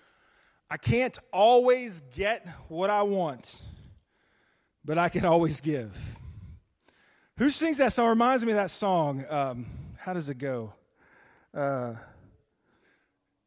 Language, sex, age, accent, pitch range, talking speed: English, male, 20-39, American, 145-205 Hz, 125 wpm